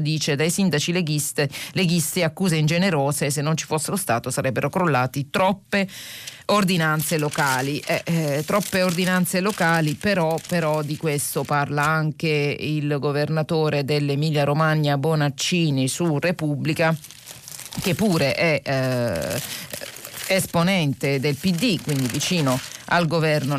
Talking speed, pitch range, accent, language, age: 115 wpm, 145-180 Hz, native, Italian, 30-49